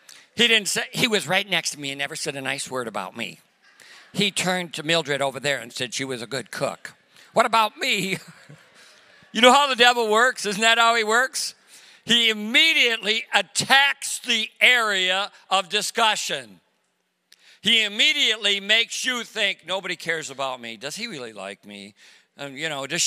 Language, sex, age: English, male, 50-69